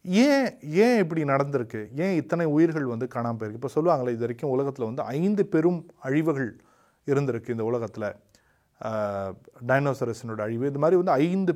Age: 30-49